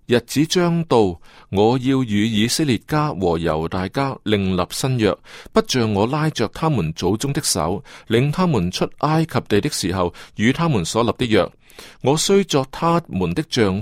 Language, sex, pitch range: Chinese, male, 95-150 Hz